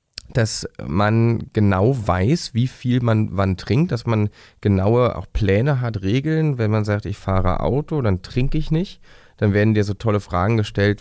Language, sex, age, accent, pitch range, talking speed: German, male, 30-49, German, 95-115 Hz, 180 wpm